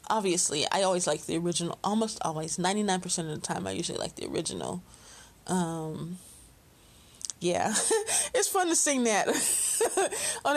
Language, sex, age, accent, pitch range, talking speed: English, female, 20-39, American, 175-230 Hz, 140 wpm